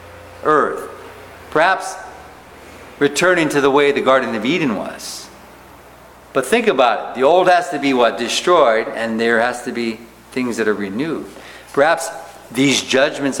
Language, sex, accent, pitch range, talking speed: English, male, American, 110-145 Hz, 150 wpm